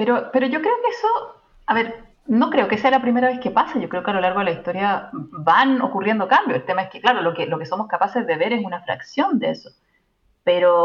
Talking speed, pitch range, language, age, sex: 265 wpm, 180-250 Hz, Spanish, 30-49, female